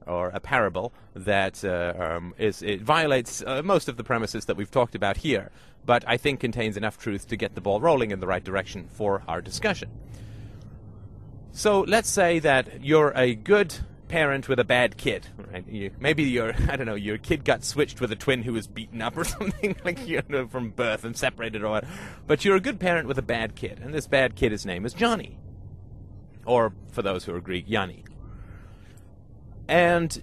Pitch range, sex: 105-145 Hz, male